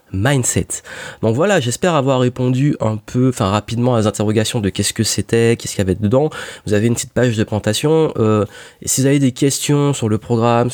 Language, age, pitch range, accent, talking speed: French, 20-39, 105-130 Hz, French, 210 wpm